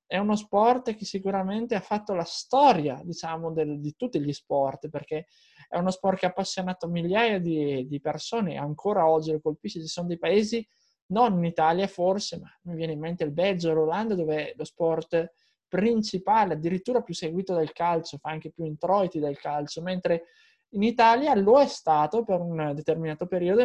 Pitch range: 160-200 Hz